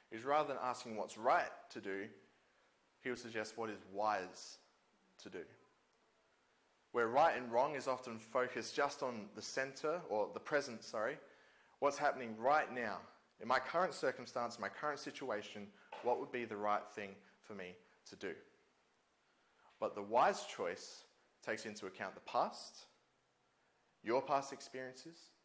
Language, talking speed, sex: English, 150 wpm, male